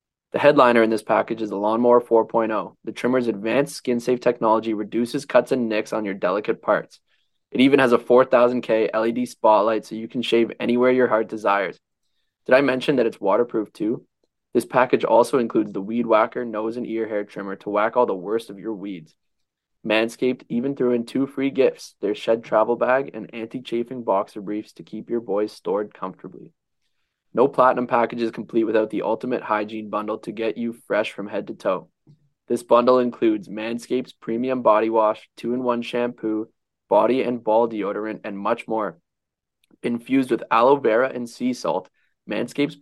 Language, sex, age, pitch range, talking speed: English, male, 20-39, 110-125 Hz, 180 wpm